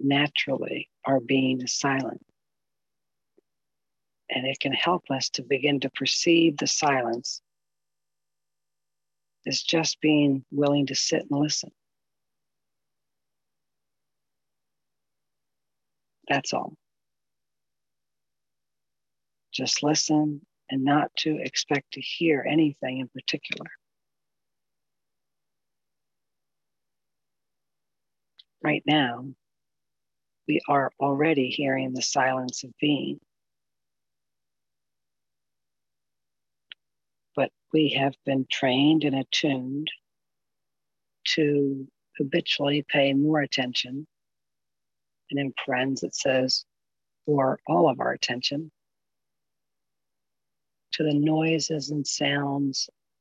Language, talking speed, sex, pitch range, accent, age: English, 80 wpm, female, 130-150 Hz, American, 60-79